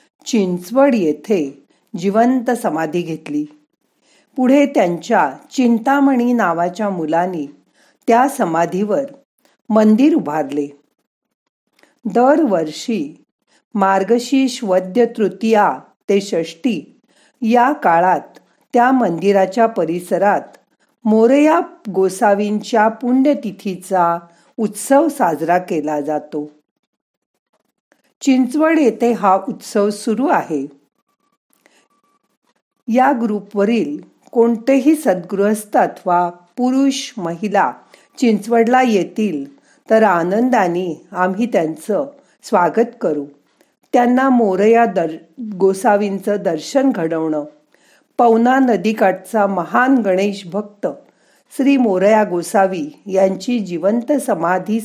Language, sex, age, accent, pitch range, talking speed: Marathi, female, 50-69, native, 185-260 Hz, 75 wpm